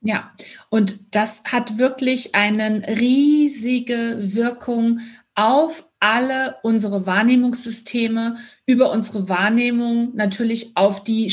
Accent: German